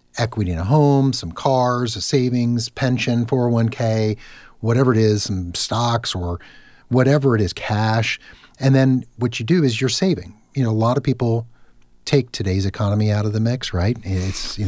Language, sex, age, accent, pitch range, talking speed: English, male, 50-69, American, 100-125 Hz, 180 wpm